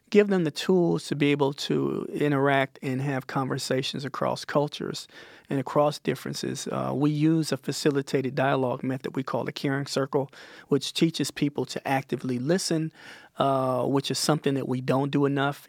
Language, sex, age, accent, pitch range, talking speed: English, male, 40-59, American, 130-150 Hz, 170 wpm